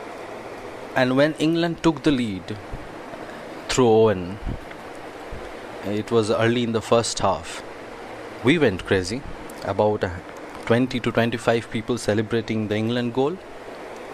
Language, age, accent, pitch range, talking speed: English, 30-49, Indian, 105-120 Hz, 120 wpm